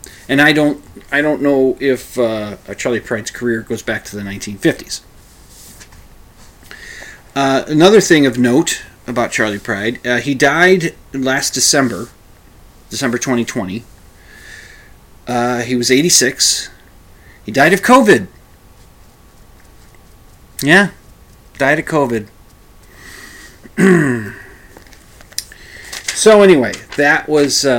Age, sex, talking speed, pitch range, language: 40-59, male, 110 wpm, 115-165 Hz, English